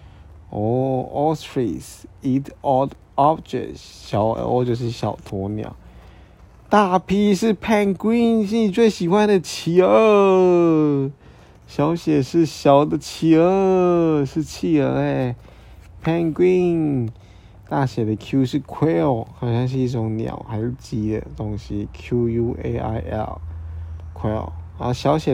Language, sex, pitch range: Chinese, male, 110-150 Hz